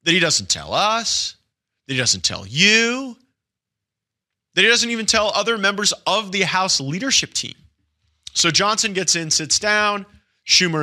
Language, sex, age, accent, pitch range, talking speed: English, male, 30-49, American, 125-165 Hz, 160 wpm